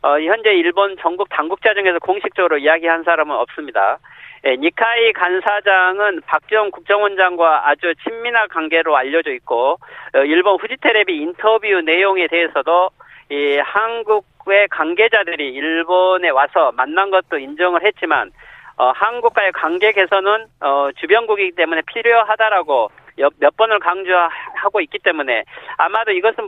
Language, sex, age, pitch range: Korean, male, 40-59, 170-225 Hz